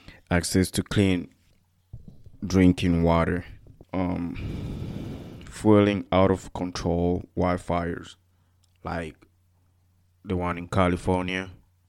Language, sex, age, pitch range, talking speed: English, male, 20-39, 90-95 Hz, 80 wpm